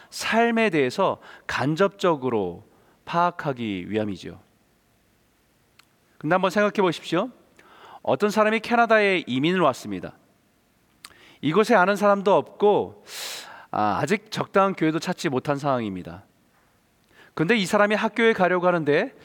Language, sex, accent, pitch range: Korean, male, native, 145-205 Hz